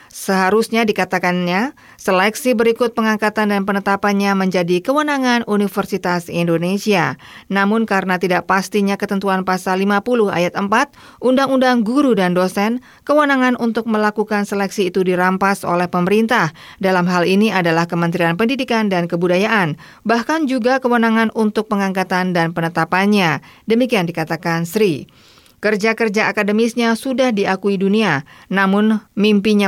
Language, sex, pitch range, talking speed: Indonesian, female, 185-230 Hz, 115 wpm